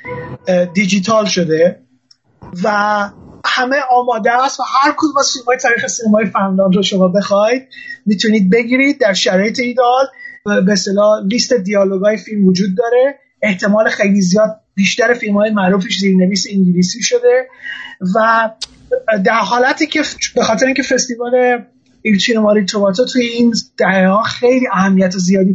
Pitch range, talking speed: 205-255 Hz, 125 wpm